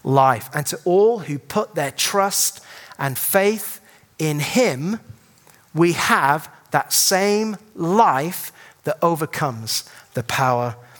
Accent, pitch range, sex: British, 135-200 Hz, male